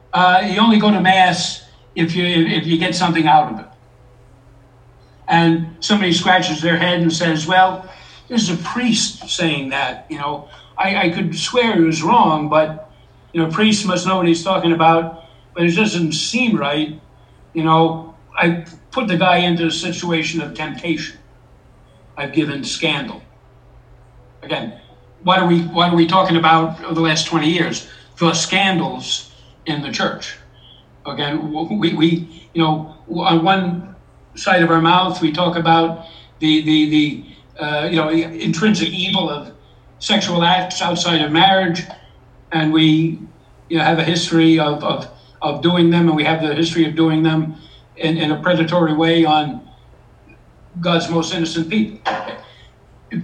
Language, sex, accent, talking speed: English, male, American, 165 wpm